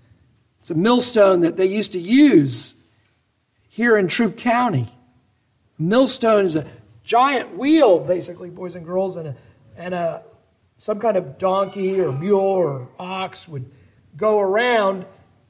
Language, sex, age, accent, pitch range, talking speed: English, male, 50-69, American, 130-200 Hz, 145 wpm